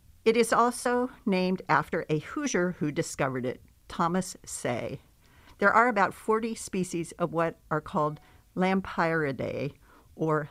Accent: American